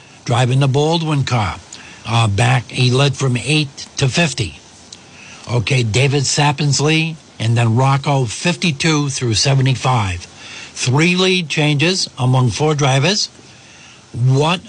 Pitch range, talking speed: 120-150 Hz, 115 wpm